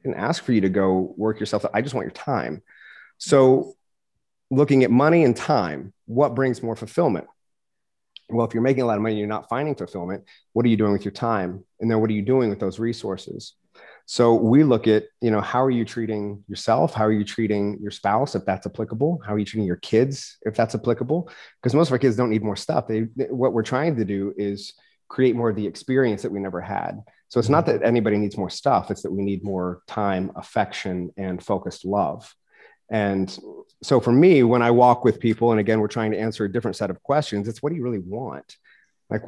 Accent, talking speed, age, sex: American, 230 wpm, 30-49, male